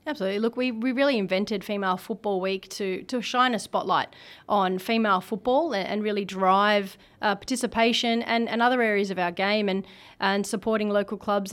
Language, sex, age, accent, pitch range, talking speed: English, female, 30-49, Australian, 195-220 Hz, 180 wpm